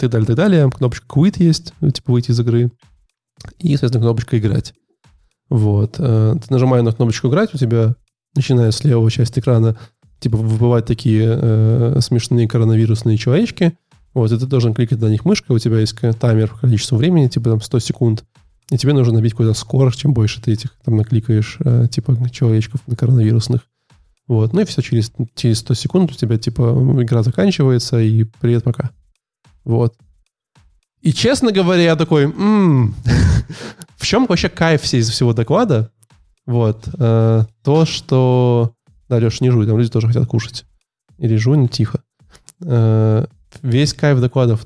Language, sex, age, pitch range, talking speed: Russian, male, 20-39, 115-135 Hz, 160 wpm